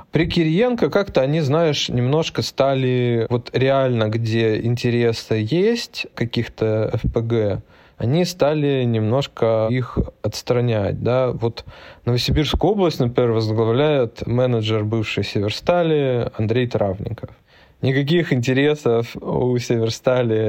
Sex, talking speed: male, 100 wpm